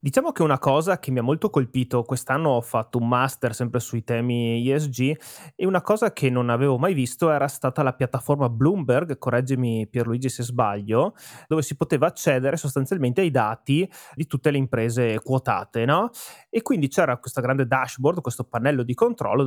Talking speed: 180 wpm